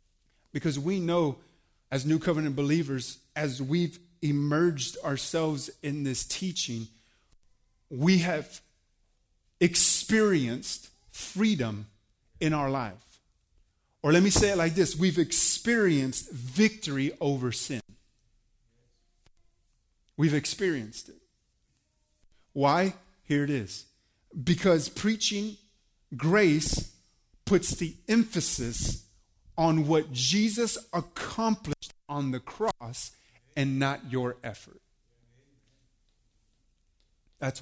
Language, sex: English, male